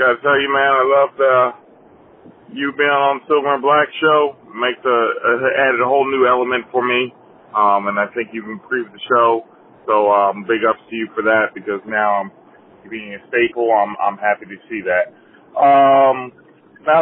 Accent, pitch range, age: American, 125-190 Hz, 30-49